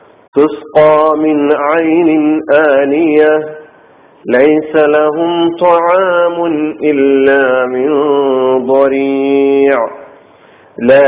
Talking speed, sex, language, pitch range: 60 wpm, male, Malayalam, 135-165 Hz